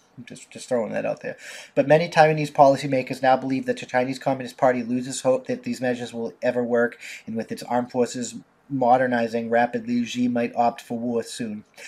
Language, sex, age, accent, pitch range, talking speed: English, male, 30-49, American, 120-155 Hz, 190 wpm